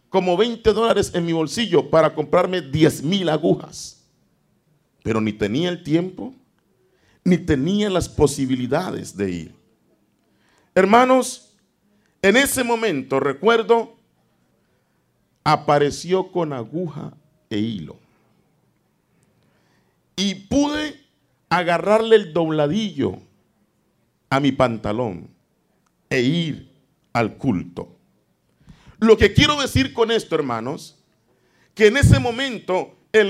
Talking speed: 100 wpm